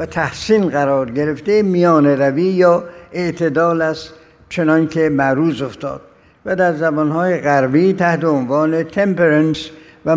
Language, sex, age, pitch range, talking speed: Persian, male, 60-79, 150-185 Hz, 125 wpm